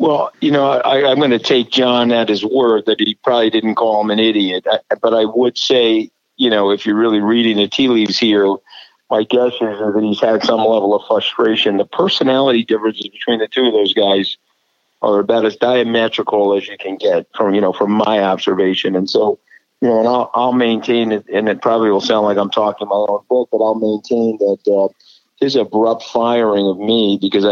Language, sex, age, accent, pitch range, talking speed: English, male, 50-69, American, 100-115 Hz, 215 wpm